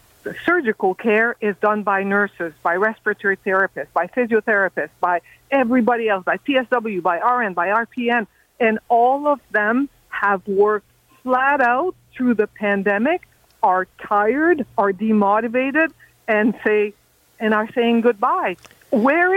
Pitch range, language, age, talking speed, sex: 195-255 Hz, English, 50-69, 135 wpm, female